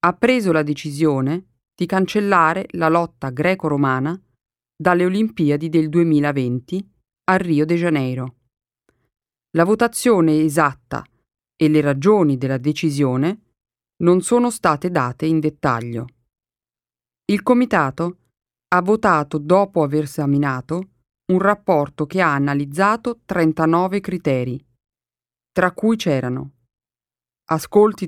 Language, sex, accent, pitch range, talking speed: Italian, female, native, 140-185 Hz, 105 wpm